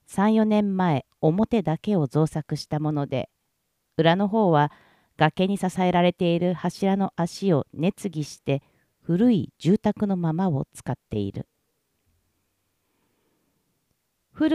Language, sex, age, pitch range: Japanese, female, 50-69, 150-210 Hz